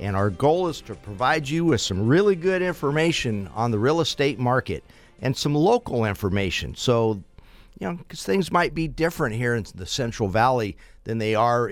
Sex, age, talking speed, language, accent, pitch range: male, 50-69, 190 wpm, English, American, 100-135 Hz